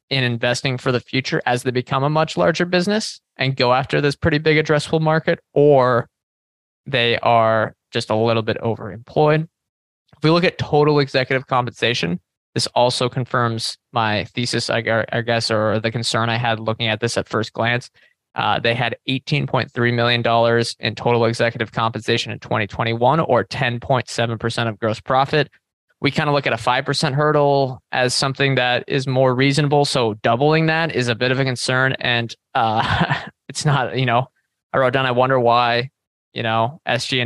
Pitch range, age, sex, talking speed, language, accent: 115-140 Hz, 20-39, male, 170 wpm, English, American